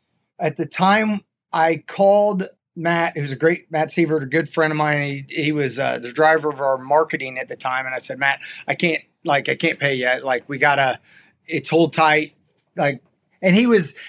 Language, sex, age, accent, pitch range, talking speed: English, male, 30-49, American, 145-180 Hz, 215 wpm